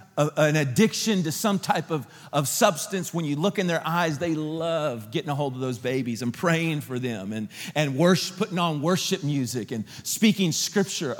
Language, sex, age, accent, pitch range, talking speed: English, male, 40-59, American, 130-170 Hz, 190 wpm